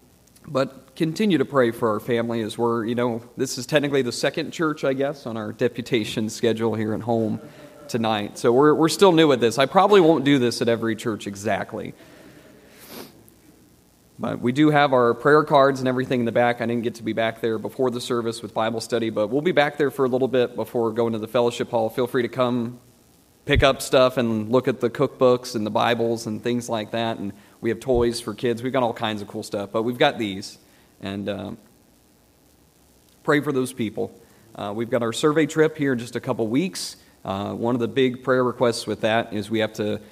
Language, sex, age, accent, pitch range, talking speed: English, male, 30-49, American, 110-130 Hz, 225 wpm